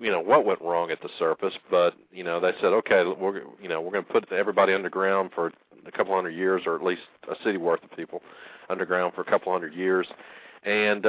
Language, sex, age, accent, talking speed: English, male, 40-59, American, 215 wpm